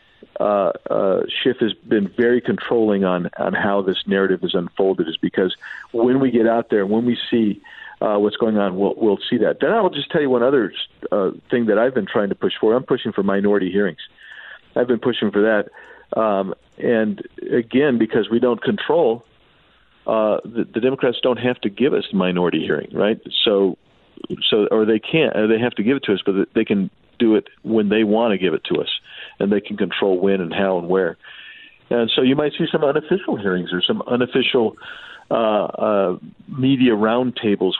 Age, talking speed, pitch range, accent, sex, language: 50-69, 205 wpm, 95-115 Hz, American, male, English